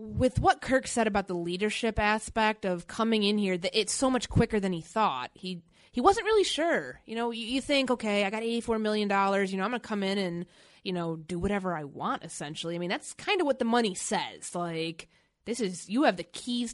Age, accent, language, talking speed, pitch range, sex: 20-39, American, English, 235 wpm, 175-230 Hz, female